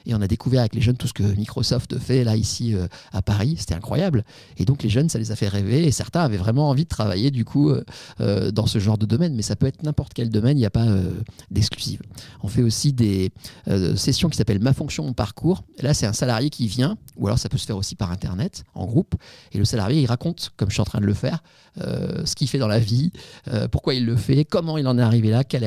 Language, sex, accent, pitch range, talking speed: French, male, French, 105-130 Hz, 280 wpm